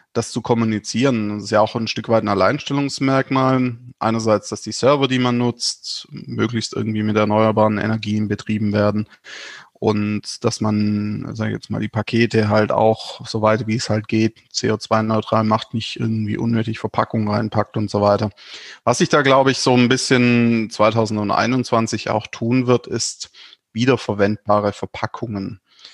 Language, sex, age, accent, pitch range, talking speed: German, male, 20-39, German, 105-125 Hz, 155 wpm